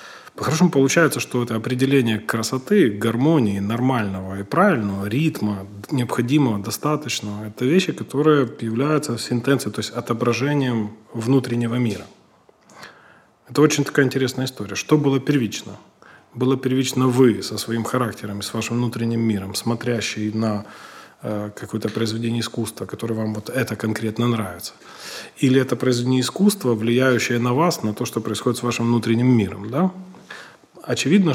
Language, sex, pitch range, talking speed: Russian, male, 115-135 Hz, 135 wpm